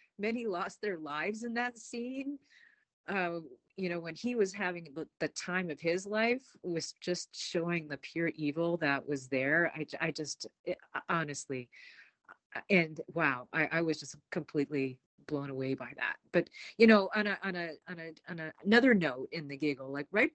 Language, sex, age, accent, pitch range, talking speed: English, female, 40-59, American, 150-220 Hz, 185 wpm